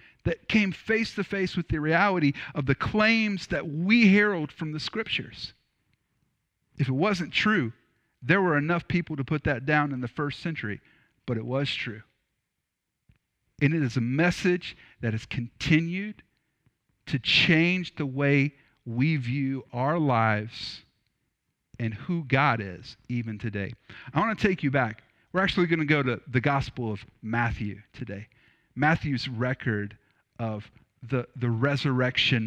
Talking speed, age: 150 wpm, 50-69